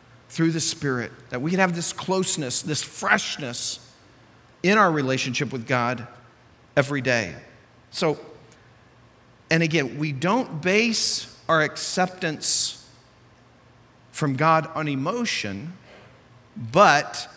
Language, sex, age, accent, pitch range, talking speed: English, male, 50-69, American, 125-170 Hz, 105 wpm